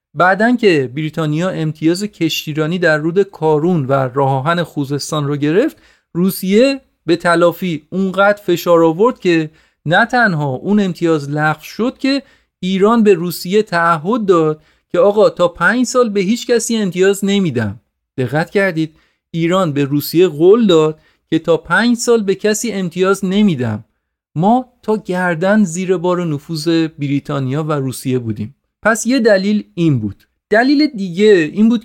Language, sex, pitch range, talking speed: Persian, male, 155-205 Hz, 145 wpm